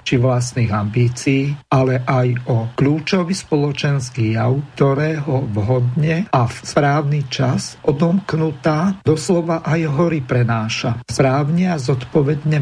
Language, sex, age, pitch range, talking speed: Slovak, male, 50-69, 125-155 Hz, 115 wpm